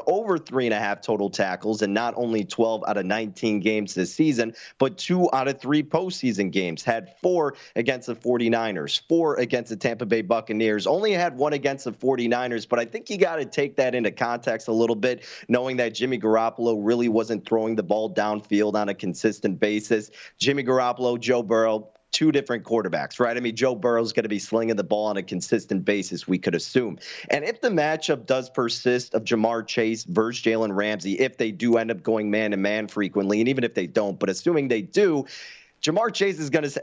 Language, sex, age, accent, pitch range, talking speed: English, male, 30-49, American, 110-130 Hz, 210 wpm